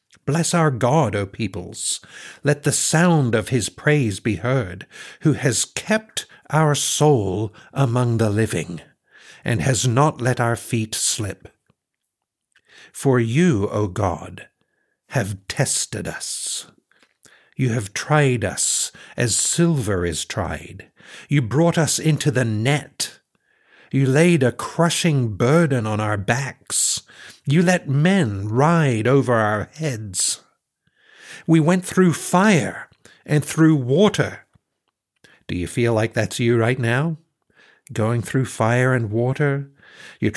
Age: 60-79